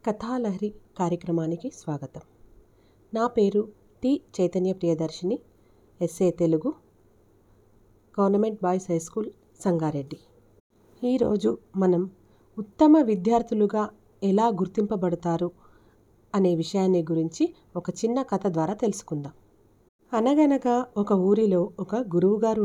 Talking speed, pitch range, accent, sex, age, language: 90 wpm, 170-230 Hz, native, female, 40-59, Telugu